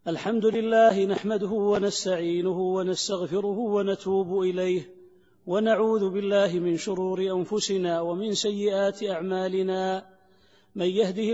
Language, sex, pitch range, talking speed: Arabic, male, 185-210 Hz, 90 wpm